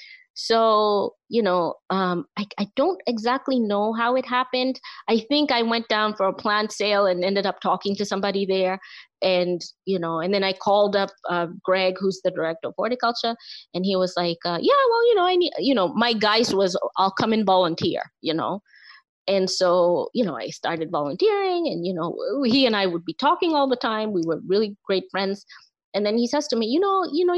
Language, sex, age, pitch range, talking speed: English, female, 20-39, 180-245 Hz, 215 wpm